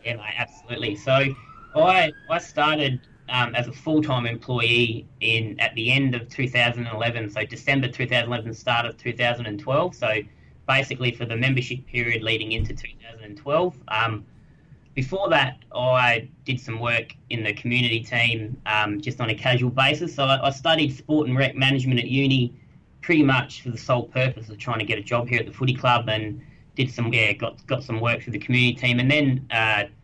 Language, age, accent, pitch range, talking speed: English, 20-39, Australian, 115-135 Hz, 185 wpm